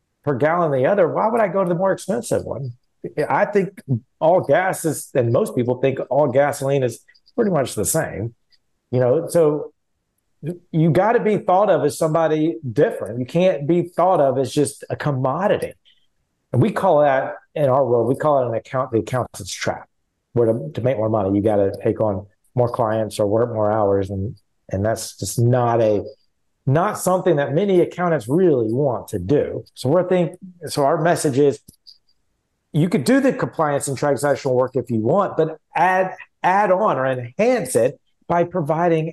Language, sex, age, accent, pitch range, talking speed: English, male, 40-59, American, 115-170 Hz, 190 wpm